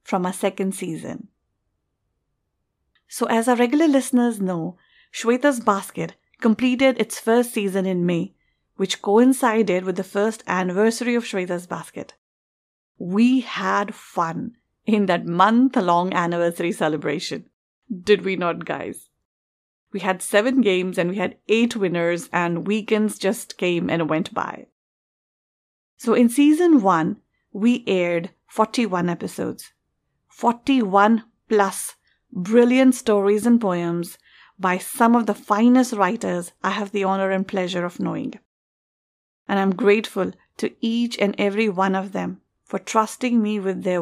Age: 50-69